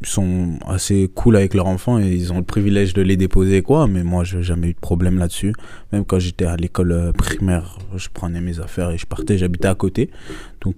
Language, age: French, 20-39